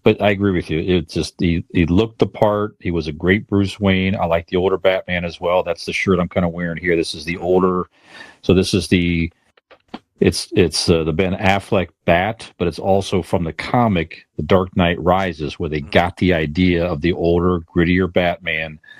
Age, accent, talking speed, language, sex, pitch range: 40-59, American, 215 wpm, English, male, 85-100 Hz